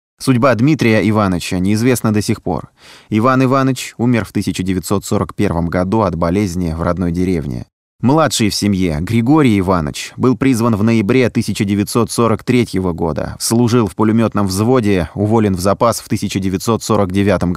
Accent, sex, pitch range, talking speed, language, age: native, male, 95-120 Hz, 130 wpm, Russian, 20-39